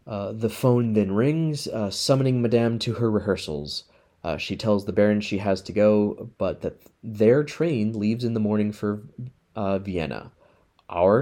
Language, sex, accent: English, male, American